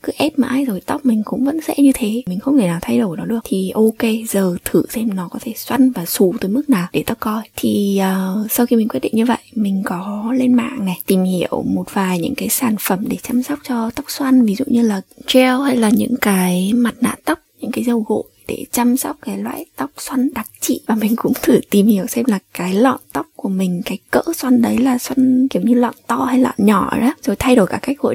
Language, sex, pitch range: Vietnamese, female, 195-255 Hz